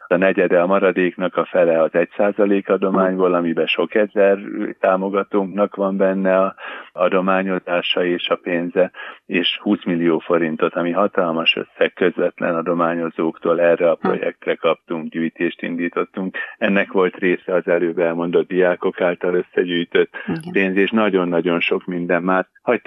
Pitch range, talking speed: 85-95 Hz, 135 wpm